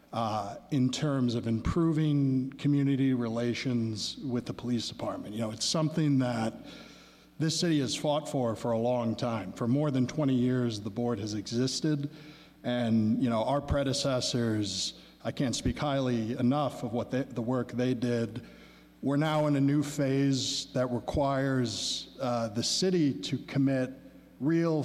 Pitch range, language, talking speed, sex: 115-140 Hz, English, 155 wpm, male